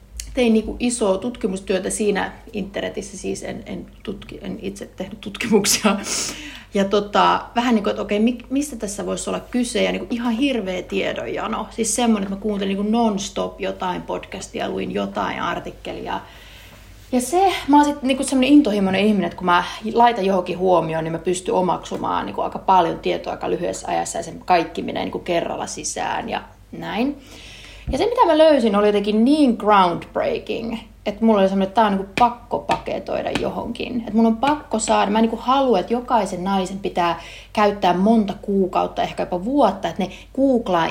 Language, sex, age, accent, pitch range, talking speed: Finnish, female, 30-49, native, 190-245 Hz, 185 wpm